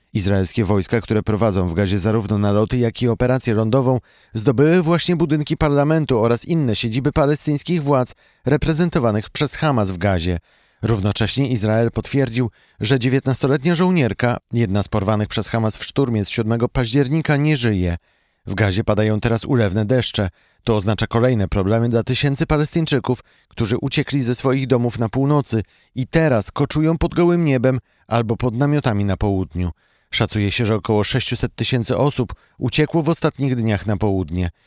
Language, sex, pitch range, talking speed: Polish, male, 105-135 Hz, 150 wpm